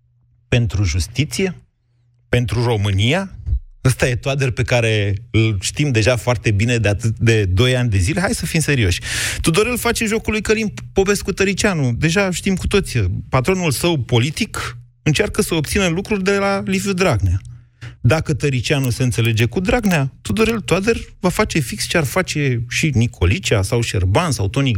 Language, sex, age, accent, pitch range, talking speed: Romanian, male, 30-49, native, 105-160 Hz, 160 wpm